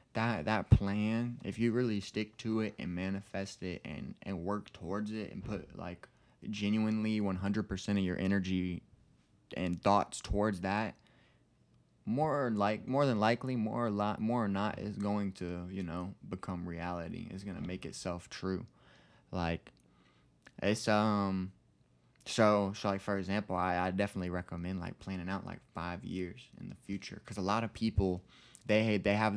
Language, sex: English, male